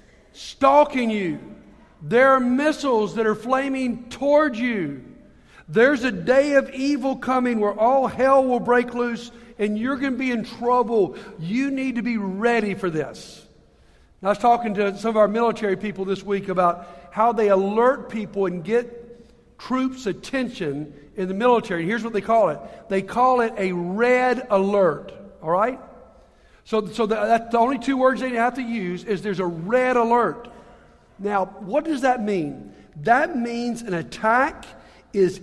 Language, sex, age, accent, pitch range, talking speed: English, male, 50-69, American, 195-250 Hz, 170 wpm